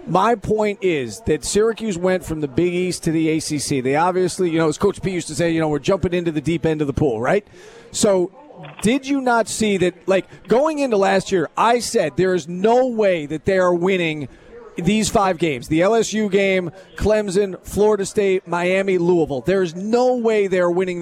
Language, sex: English, male